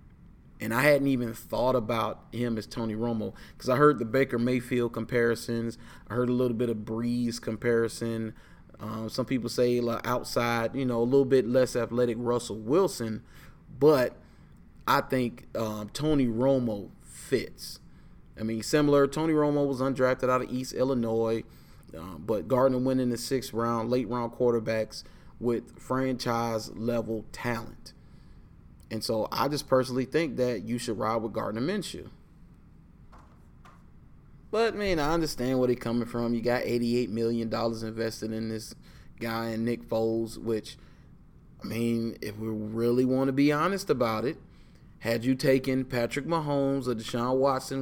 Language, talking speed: English, 150 wpm